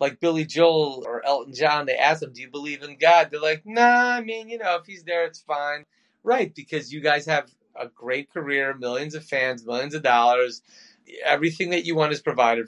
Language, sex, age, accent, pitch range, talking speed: English, male, 30-49, American, 125-160 Hz, 220 wpm